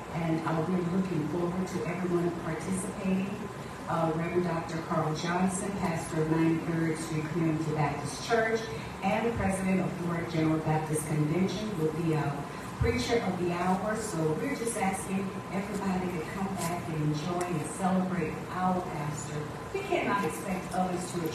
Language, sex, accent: English, female, American